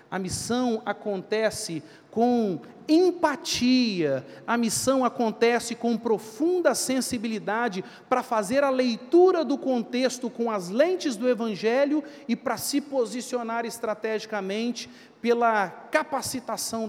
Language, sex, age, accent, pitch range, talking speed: Portuguese, male, 40-59, Brazilian, 205-265 Hz, 105 wpm